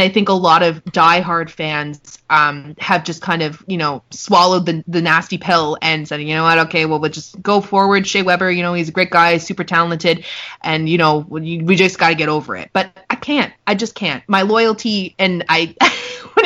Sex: female